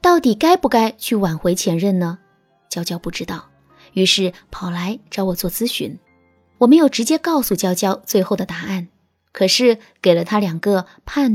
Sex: female